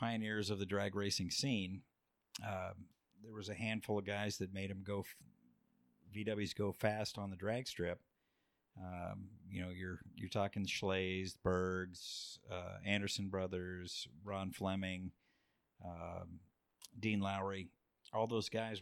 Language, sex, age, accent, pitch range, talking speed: English, male, 50-69, American, 90-105 Hz, 140 wpm